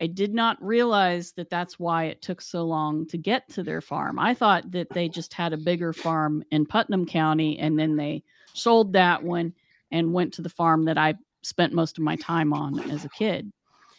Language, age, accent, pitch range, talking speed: English, 40-59, American, 160-185 Hz, 215 wpm